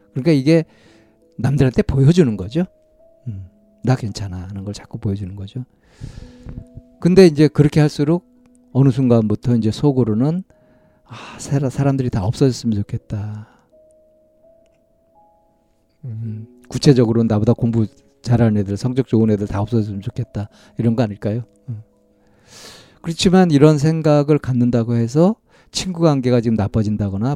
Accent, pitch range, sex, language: native, 105-145 Hz, male, Korean